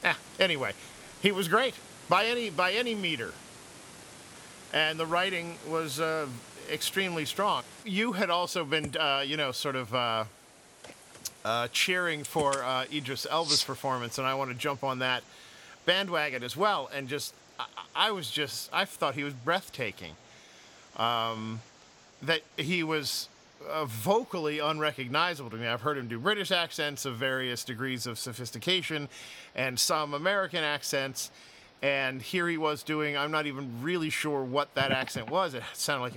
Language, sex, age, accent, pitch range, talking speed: English, male, 50-69, American, 135-170 Hz, 160 wpm